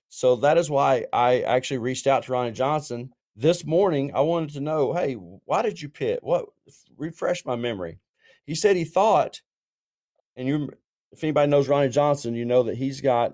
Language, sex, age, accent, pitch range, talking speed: English, male, 40-59, American, 115-145 Hz, 190 wpm